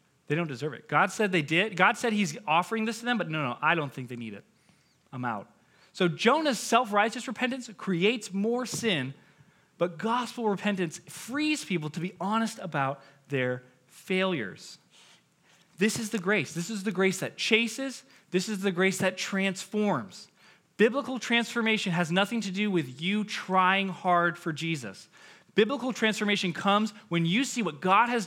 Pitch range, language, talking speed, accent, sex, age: 165-220 Hz, English, 170 wpm, American, male, 20-39